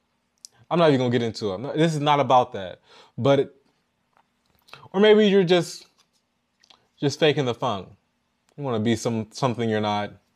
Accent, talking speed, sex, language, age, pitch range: American, 185 wpm, male, English, 20-39, 110-150 Hz